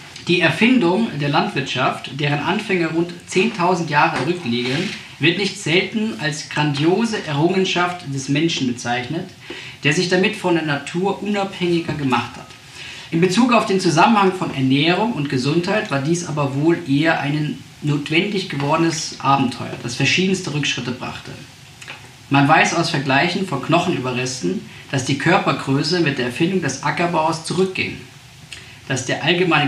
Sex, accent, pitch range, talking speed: male, German, 130-175 Hz, 140 wpm